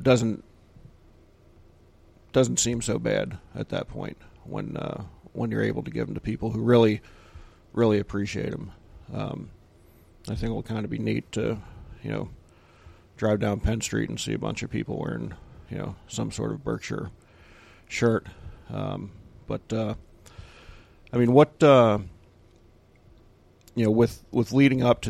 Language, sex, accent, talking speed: English, male, American, 160 wpm